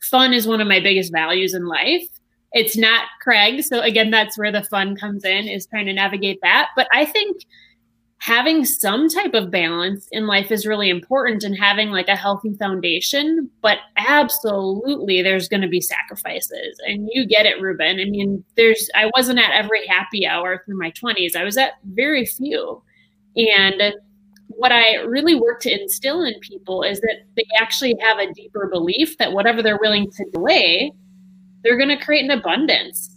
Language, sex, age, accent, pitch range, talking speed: English, female, 20-39, American, 195-240 Hz, 185 wpm